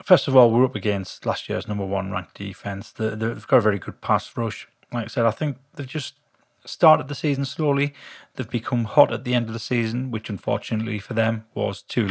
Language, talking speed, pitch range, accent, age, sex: English, 225 wpm, 105-130 Hz, British, 30-49, male